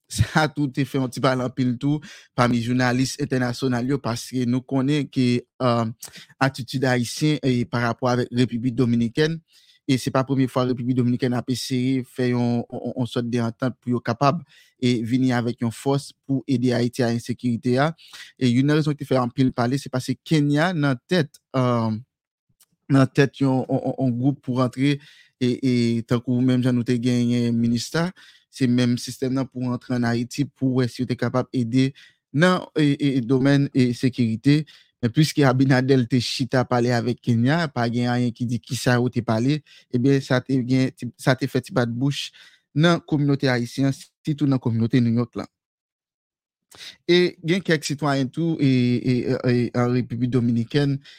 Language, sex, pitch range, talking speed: French, male, 120-140 Hz, 180 wpm